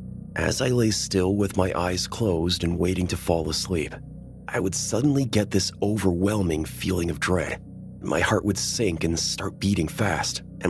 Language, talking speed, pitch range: English, 175 wpm, 85-105 Hz